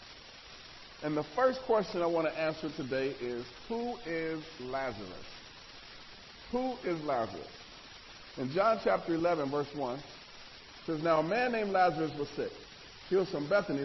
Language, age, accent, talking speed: English, 40-59, American, 150 wpm